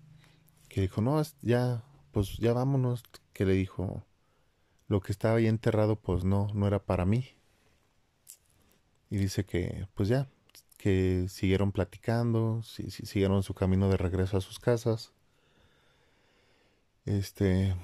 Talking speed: 130 wpm